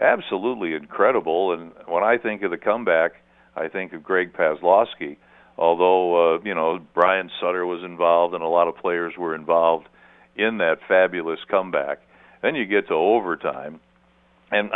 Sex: male